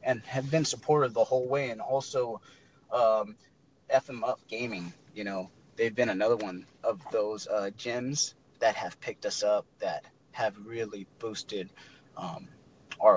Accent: American